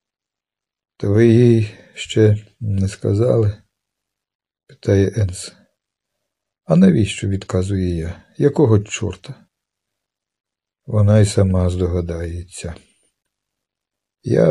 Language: Ukrainian